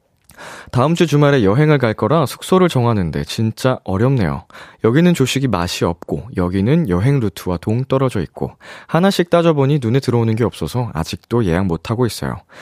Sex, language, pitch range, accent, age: male, Korean, 100-155 Hz, native, 20-39